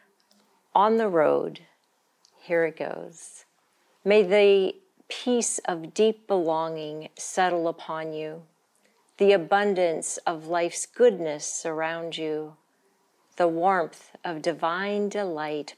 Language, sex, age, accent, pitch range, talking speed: English, female, 40-59, American, 155-185 Hz, 105 wpm